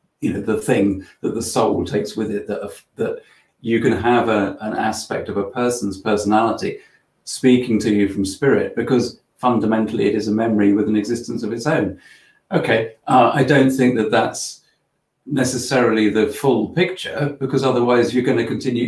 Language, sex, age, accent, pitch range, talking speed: English, male, 40-59, British, 100-120 Hz, 180 wpm